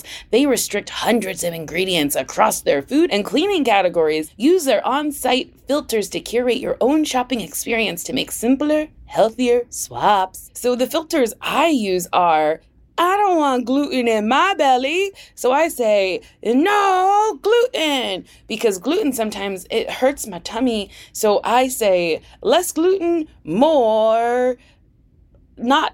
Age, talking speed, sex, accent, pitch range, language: 20-39, 135 wpm, female, American, 210-325 Hz, English